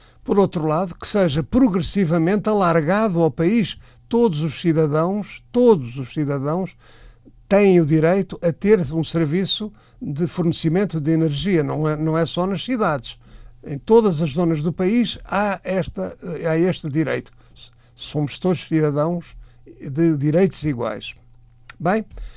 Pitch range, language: 140-185 Hz, Portuguese